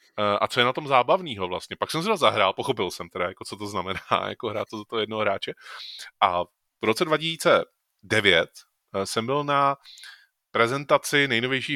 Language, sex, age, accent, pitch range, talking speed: Czech, male, 20-39, native, 105-135 Hz, 180 wpm